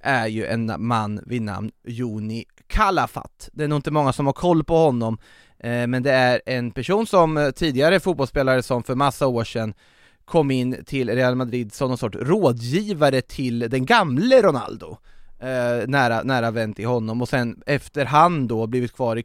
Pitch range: 115-135 Hz